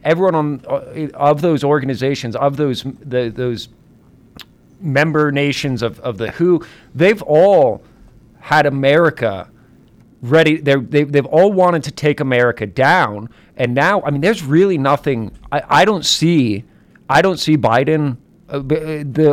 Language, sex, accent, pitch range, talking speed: English, male, American, 125-160 Hz, 135 wpm